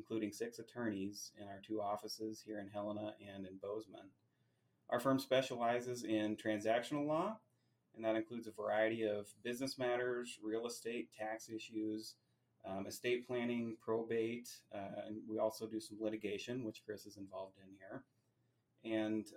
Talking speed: 150 wpm